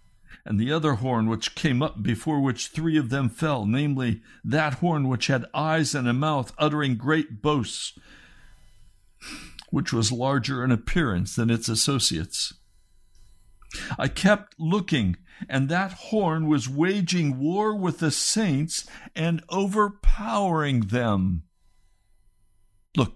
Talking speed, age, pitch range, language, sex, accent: 125 wpm, 60-79, 100-155 Hz, English, male, American